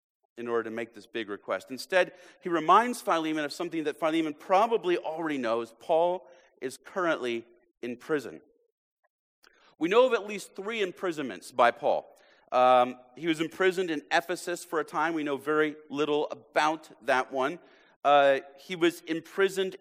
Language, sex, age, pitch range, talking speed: English, male, 40-59, 125-165 Hz, 160 wpm